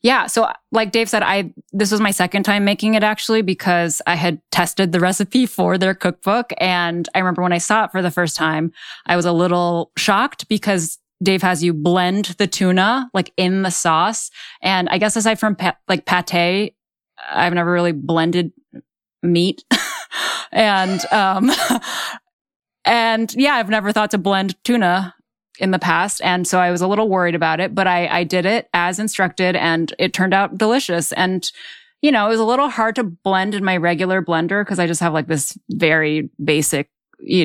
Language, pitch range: English, 170-210 Hz